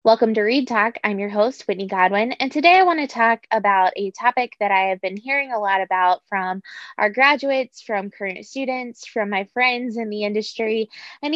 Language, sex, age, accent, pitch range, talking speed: English, female, 20-39, American, 195-225 Hz, 205 wpm